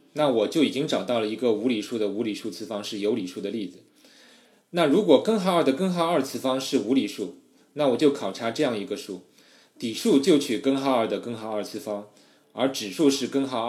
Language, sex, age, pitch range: Chinese, male, 20-39, 110-150 Hz